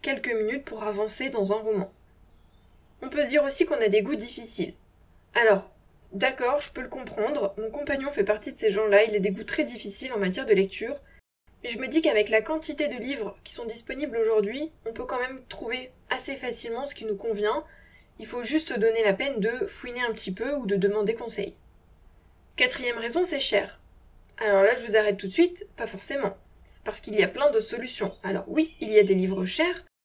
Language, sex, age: French, female, 20-39